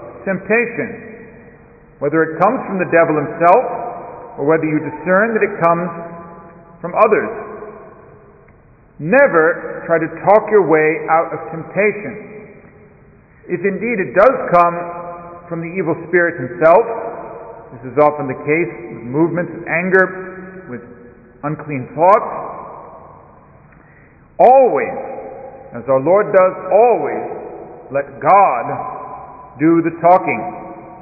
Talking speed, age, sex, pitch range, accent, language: 115 wpm, 50-69, male, 155-205 Hz, American, English